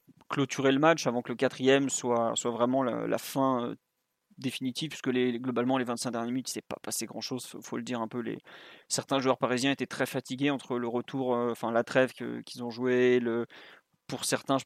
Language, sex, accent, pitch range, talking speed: French, male, French, 125-140 Hz, 240 wpm